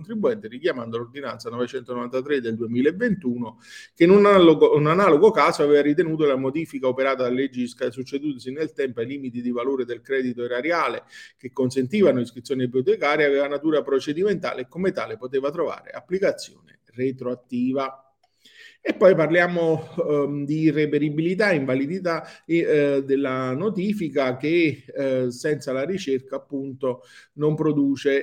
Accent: native